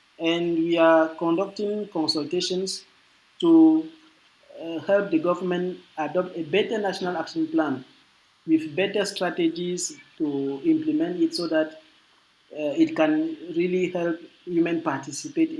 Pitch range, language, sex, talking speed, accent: 160-220 Hz, English, male, 120 wpm, Nigerian